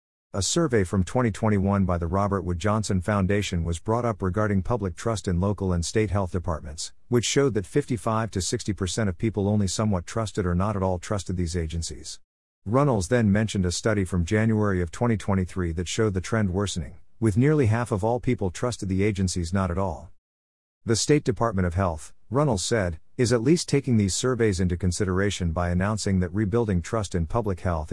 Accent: American